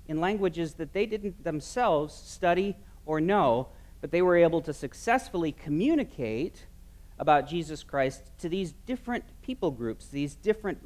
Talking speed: 145 wpm